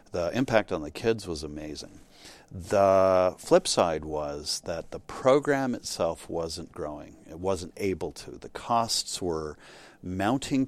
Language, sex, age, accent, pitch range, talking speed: English, male, 50-69, American, 85-110 Hz, 140 wpm